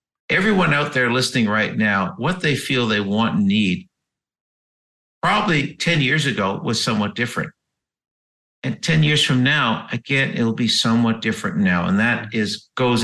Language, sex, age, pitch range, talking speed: English, male, 50-69, 110-150 Hz, 160 wpm